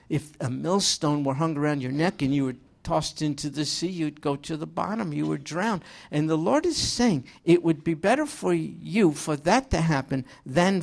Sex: male